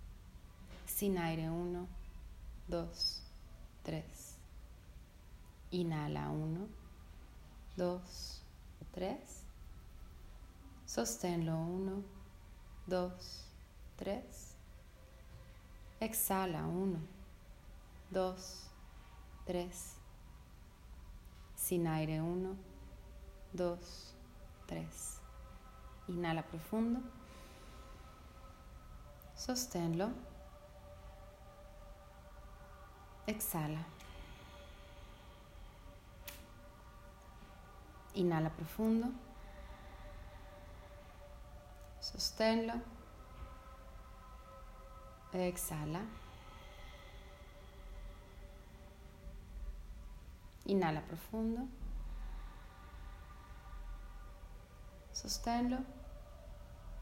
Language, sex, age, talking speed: Spanish, female, 30-49, 35 wpm